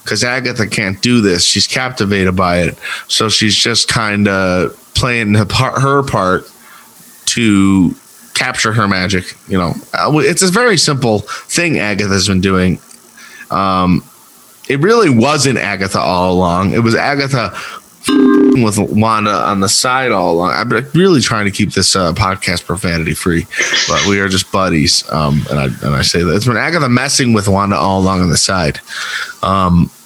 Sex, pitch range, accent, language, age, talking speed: male, 90-115 Hz, American, English, 20-39, 170 wpm